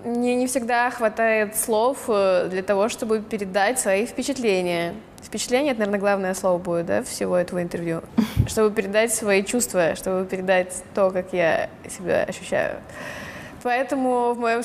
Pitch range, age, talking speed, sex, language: 190-225 Hz, 20-39, 145 wpm, female, Russian